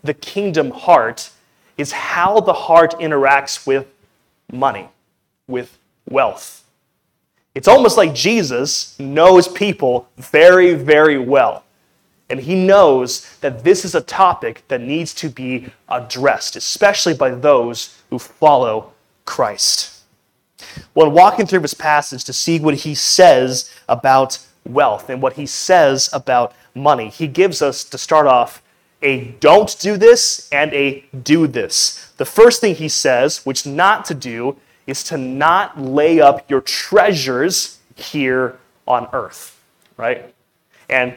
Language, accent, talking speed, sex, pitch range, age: English, American, 135 wpm, male, 130-160 Hz, 30-49